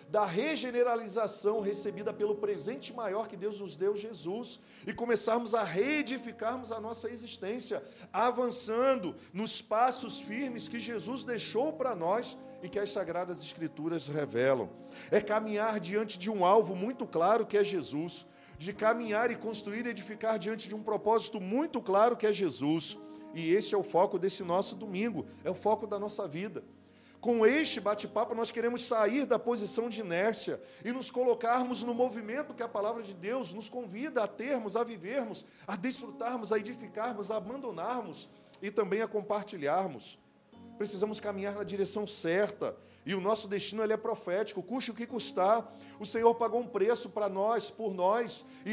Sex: male